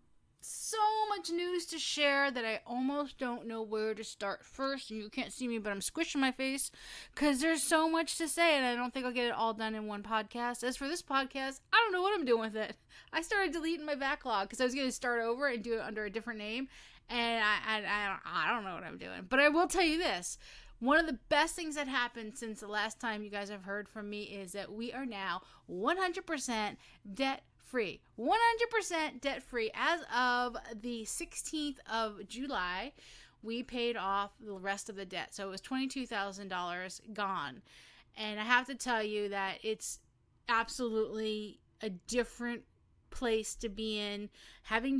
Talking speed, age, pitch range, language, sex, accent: 200 wpm, 30-49, 215-275 Hz, English, female, American